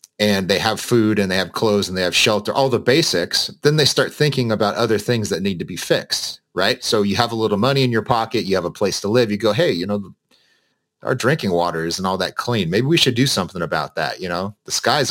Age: 30-49